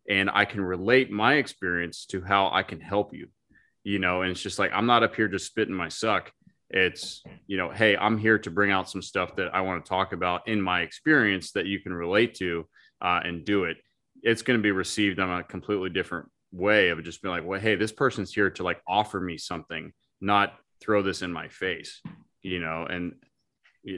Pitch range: 90-110 Hz